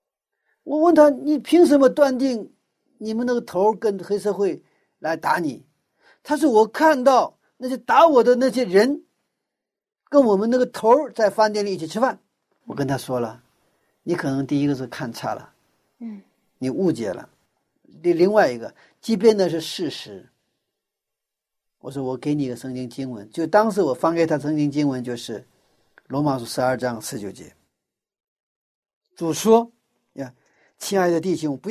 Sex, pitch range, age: male, 145-235 Hz, 50-69